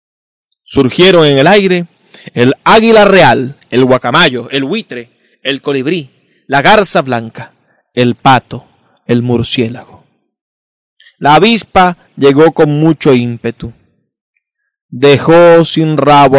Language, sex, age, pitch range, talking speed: Spanish, male, 30-49, 135-195 Hz, 105 wpm